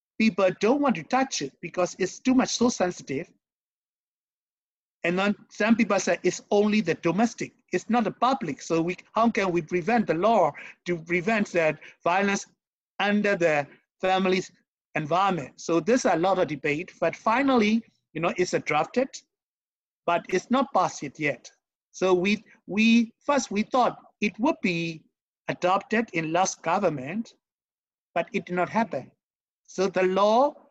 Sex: male